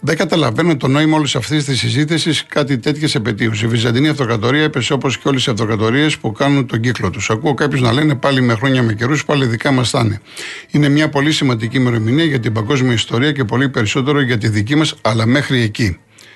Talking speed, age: 210 wpm, 50-69